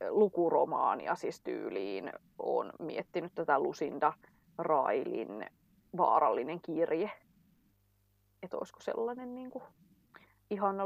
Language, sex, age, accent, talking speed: English, female, 20-39, Finnish, 85 wpm